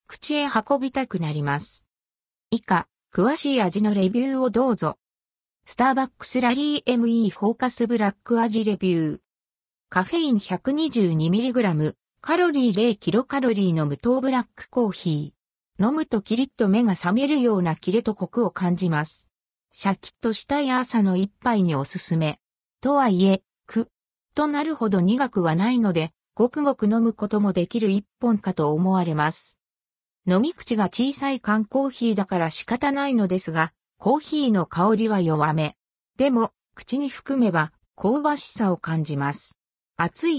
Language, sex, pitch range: Japanese, female, 170-255 Hz